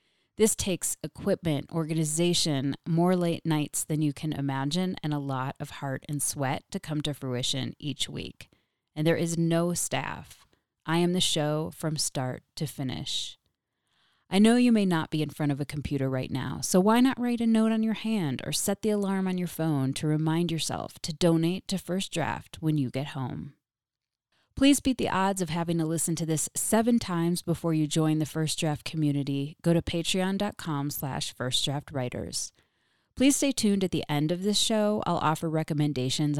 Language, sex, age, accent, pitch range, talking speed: English, female, 30-49, American, 145-175 Hz, 190 wpm